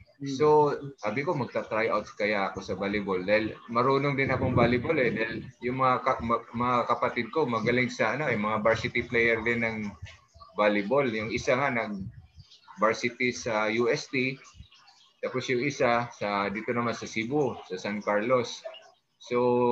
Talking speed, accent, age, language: 150 wpm, native, 20-39, Filipino